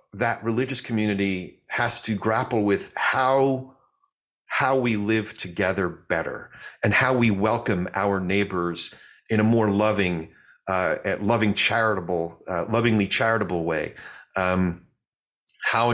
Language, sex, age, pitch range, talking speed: English, male, 40-59, 100-125 Hz, 120 wpm